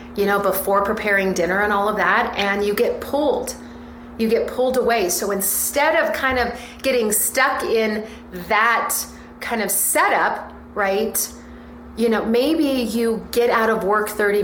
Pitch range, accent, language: 190-230 Hz, American, English